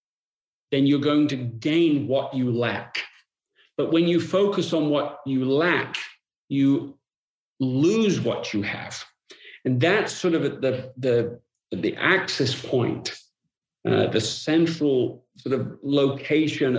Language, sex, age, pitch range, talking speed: English, male, 50-69, 125-160 Hz, 130 wpm